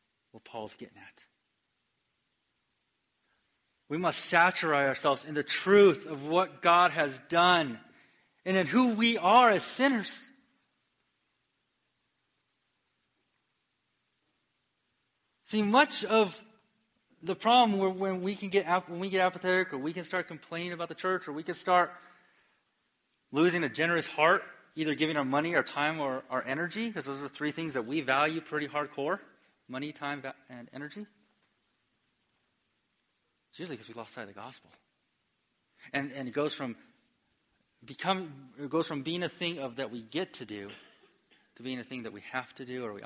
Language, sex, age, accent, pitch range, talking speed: English, male, 30-49, American, 145-220 Hz, 160 wpm